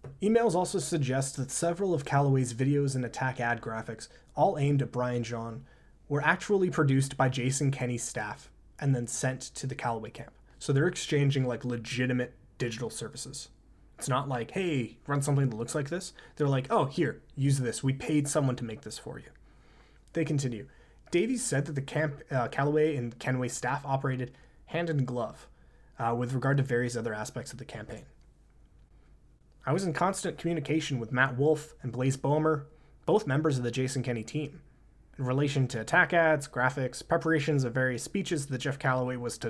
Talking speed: 185 wpm